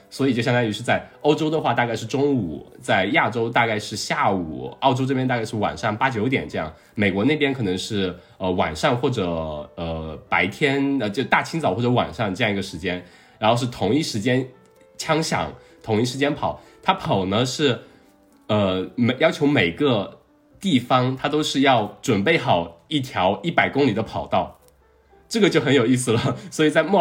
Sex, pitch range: male, 105-145 Hz